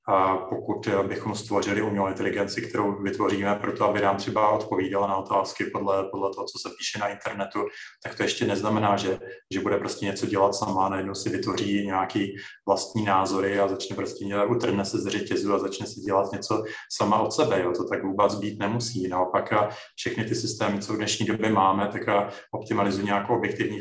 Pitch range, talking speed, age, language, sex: 100-110 Hz, 190 wpm, 30-49, Czech, male